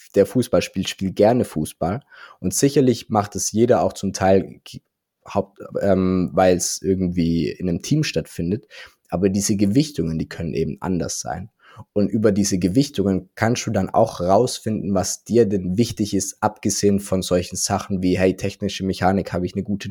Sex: male